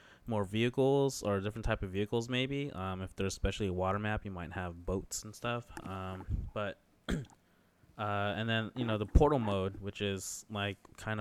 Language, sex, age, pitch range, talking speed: English, male, 20-39, 95-115 Hz, 185 wpm